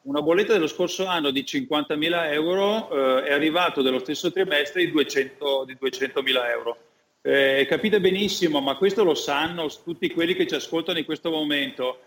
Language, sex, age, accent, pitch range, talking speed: Italian, male, 40-59, native, 135-165 Hz, 170 wpm